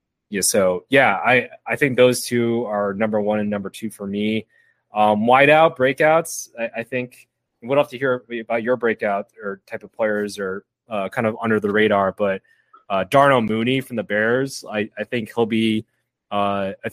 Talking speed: 190 wpm